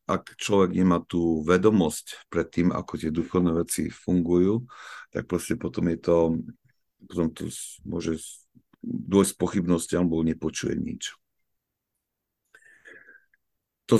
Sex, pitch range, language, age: male, 80-100 Hz, Slovak, 50-69